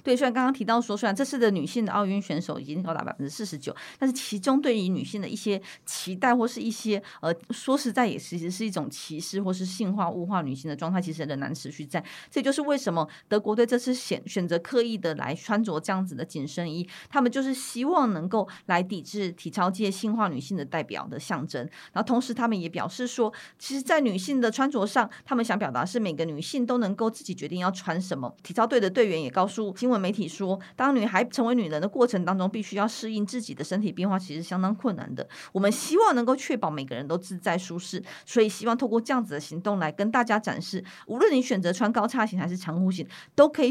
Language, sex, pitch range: Chinese, female, 175-235 Hz